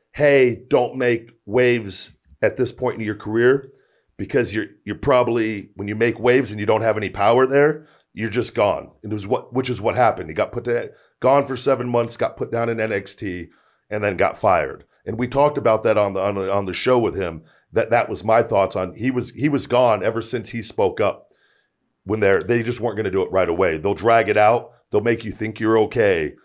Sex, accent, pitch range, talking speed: male, American, 100-125 Hz, 235 wpm